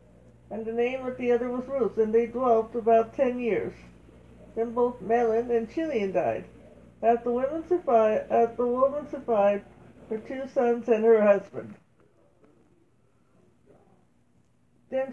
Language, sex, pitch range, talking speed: English, female, 220-245 Hz, 125 wpm